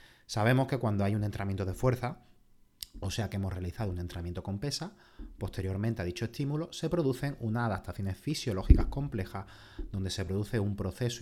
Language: Spanish